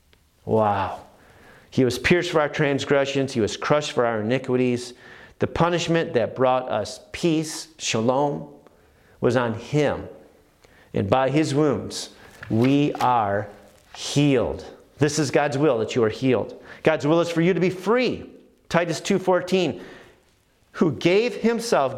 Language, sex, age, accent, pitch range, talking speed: English, male, 40-59, American, 135-185 Hz, 140 wpm